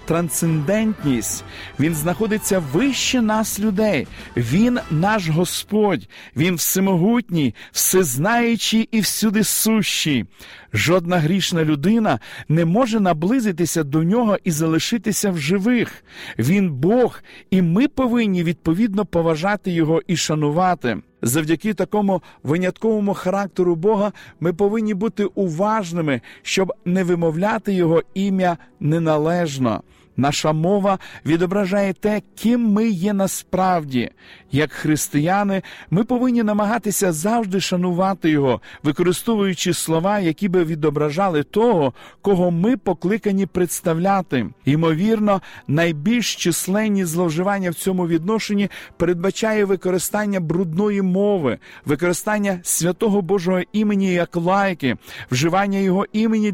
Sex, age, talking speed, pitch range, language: male, 50-69, 105 wpm, 165-210 Hz, Ukrainian